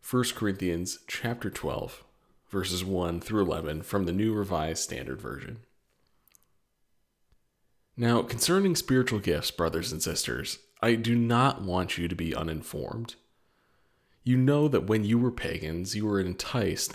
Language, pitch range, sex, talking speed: English, 90-120 Hz, male, 140 wpm